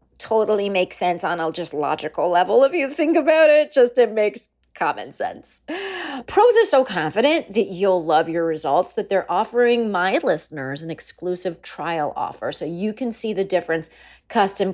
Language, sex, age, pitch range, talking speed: English, female, 30-49, 180-275 Hz, 175 wpm